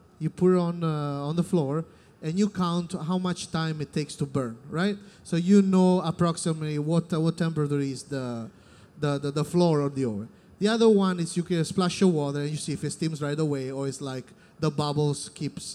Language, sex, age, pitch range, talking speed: English, male, 30-49, 145-185 Hz, 225 wpm